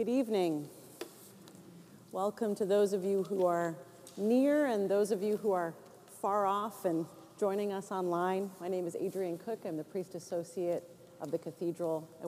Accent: American